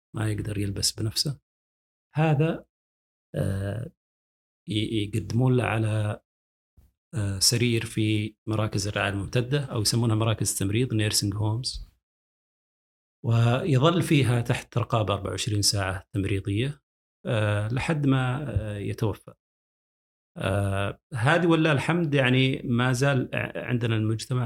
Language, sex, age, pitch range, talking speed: Arabic, male, 40-59, 100-120 Hz, 90 wpm